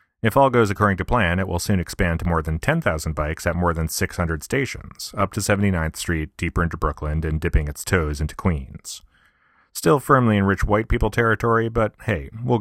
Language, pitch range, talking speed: English, 80-105 Hz, 205 wpm